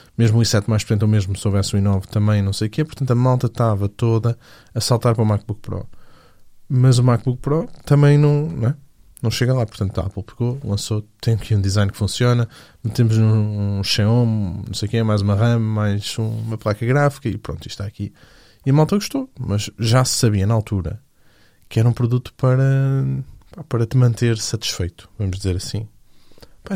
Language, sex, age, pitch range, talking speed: Portuguese, male, 20-39, 100-120 Hz, 205 wpm